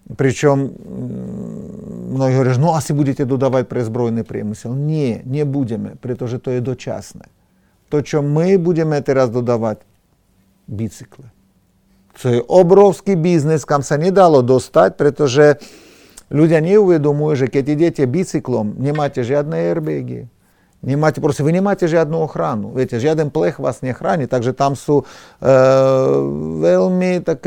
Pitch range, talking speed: 125-155 Hz, 135 wpm